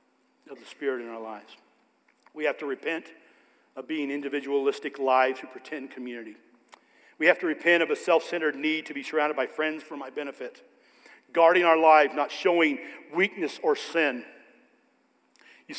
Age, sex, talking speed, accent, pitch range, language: 50-69, male, 165 wpm, American, 140-195 Hz, English